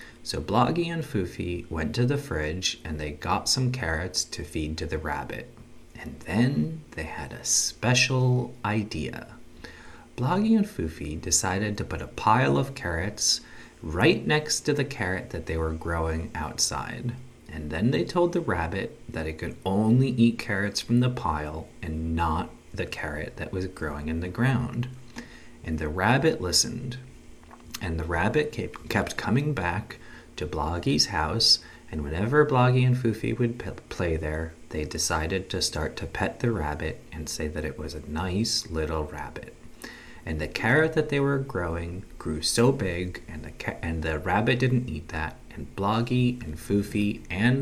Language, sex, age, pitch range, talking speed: English, male, 30-49, 80-120 Hz, 165 wpm